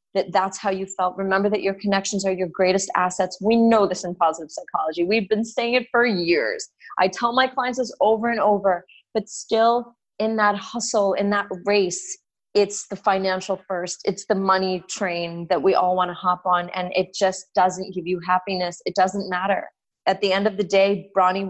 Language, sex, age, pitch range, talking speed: English, female, 30-49, 195-270 Hz, 205 wpm